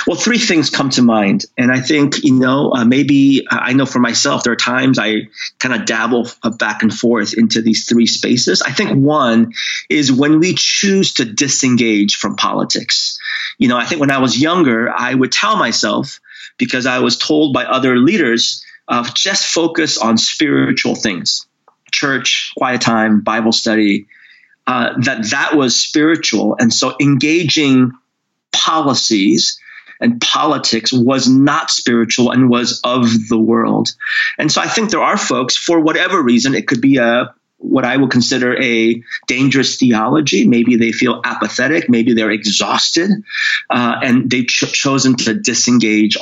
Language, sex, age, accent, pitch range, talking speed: English, male, 30-49, American, 115-150 Hz, 165 wpm